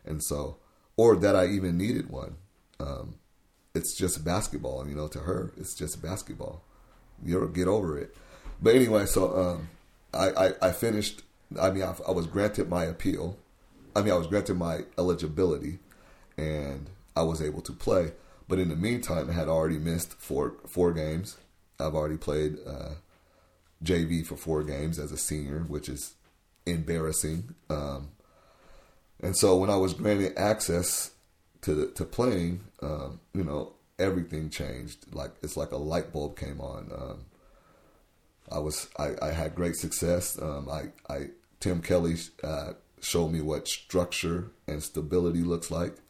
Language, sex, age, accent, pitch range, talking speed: English, male, 30-49, American, 75-95 Hz, 165 wpm